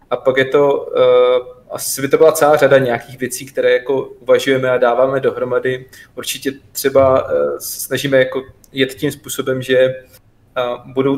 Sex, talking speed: male, 145 wpm